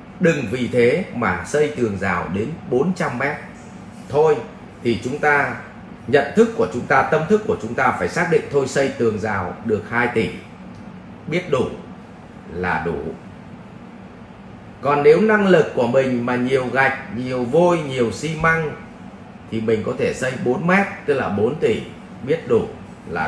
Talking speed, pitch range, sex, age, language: 170 wpm, 115-165 Hz, male, 30-49, English